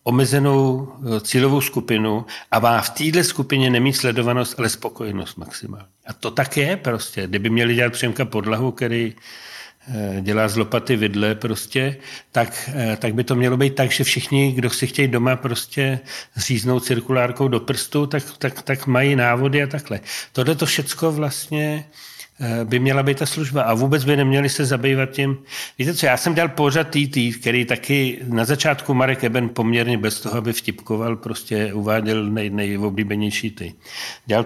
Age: 40-59